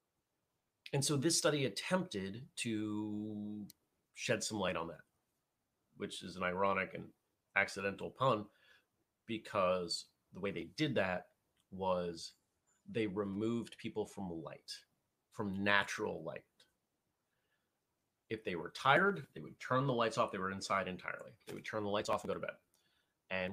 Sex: male